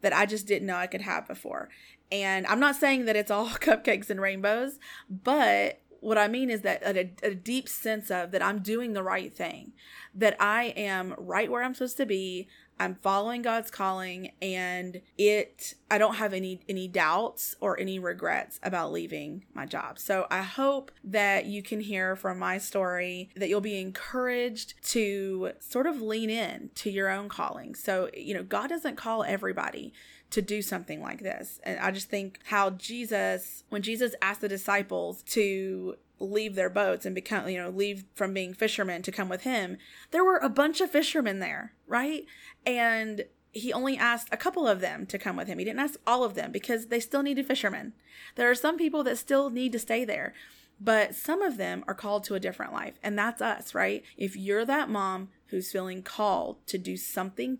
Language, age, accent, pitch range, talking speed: English, 30-49, American, 195-245 Hz, 200 wpm